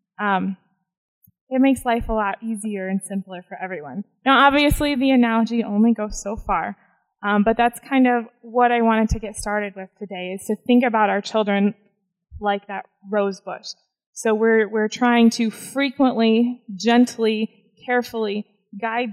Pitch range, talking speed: 205-245 Hz, 160 wpm